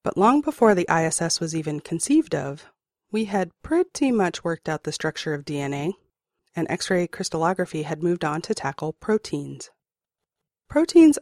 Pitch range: 155-210 Hz